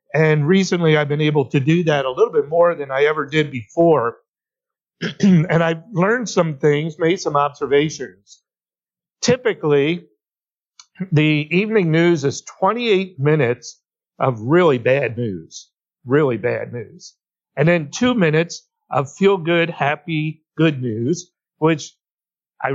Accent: American